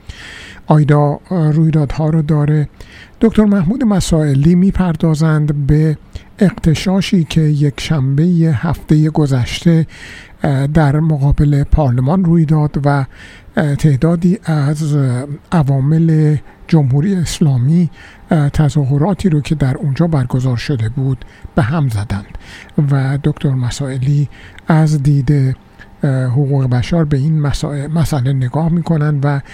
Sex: male